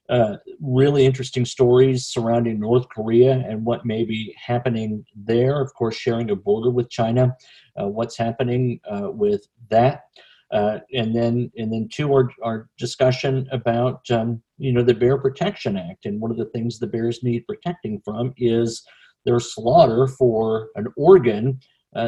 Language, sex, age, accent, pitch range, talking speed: English, male, 50-69, American, 115-135 Hz, 165 wpm